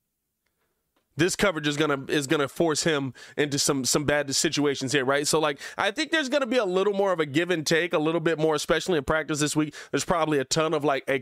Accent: American